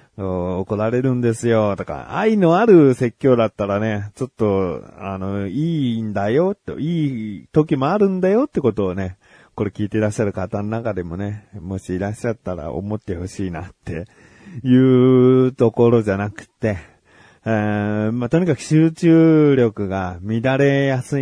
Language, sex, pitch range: Japanese, male, 100-150 Hz